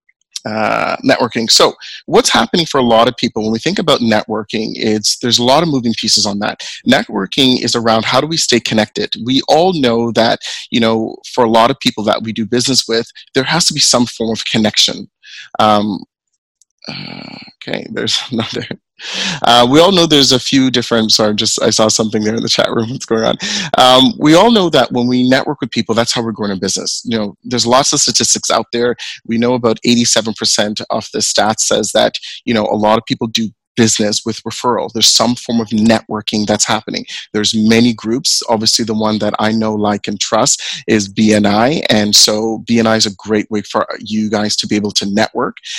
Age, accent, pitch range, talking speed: 30-49, American, 110-125 Hz, 210 wpm